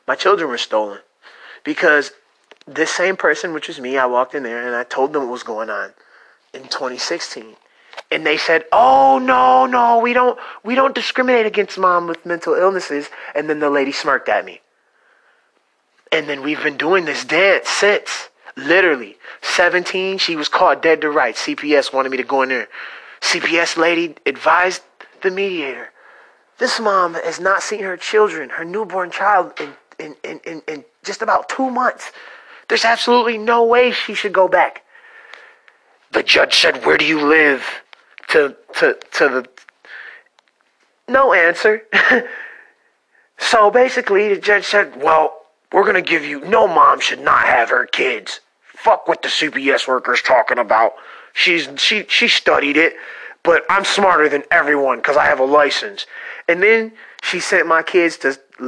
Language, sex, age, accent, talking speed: English, male, 30-49, American, 165 wpm